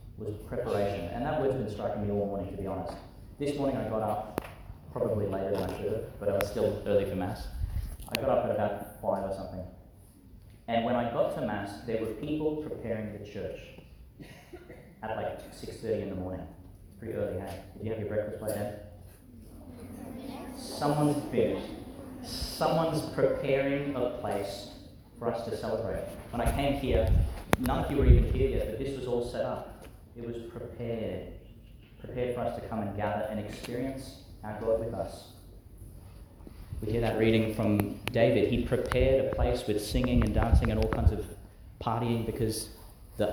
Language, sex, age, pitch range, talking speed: English, male, 30-49, 100-120 Hz, 185 wpm